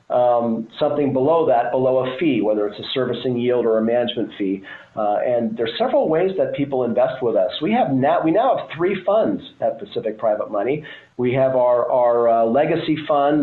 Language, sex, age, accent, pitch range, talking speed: English, male, 40-59, American, 115-130 Hz, 200 wpm